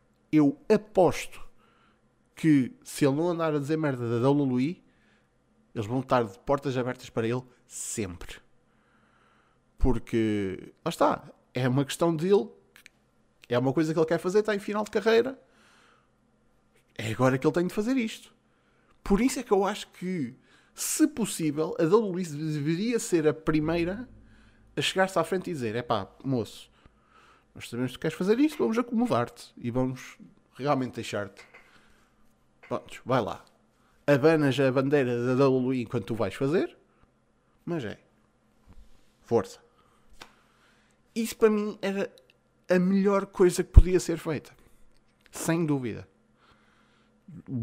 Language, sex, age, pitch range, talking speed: Portuguese, male, 20-39, 125-180 Hz, 145 wpm